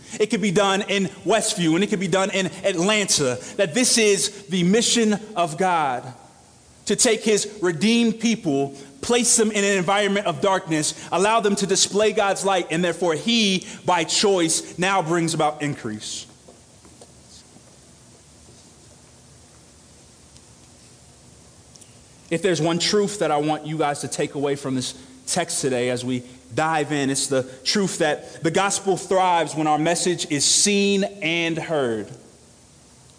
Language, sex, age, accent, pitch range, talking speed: English, male, 30-49, American, 130-195 Hz, 145 wpm